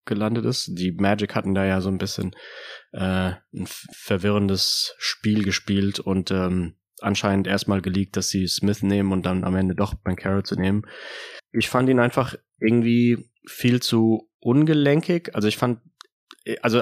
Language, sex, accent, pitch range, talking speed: German, male, German, 100-115 Hz, 160 wpm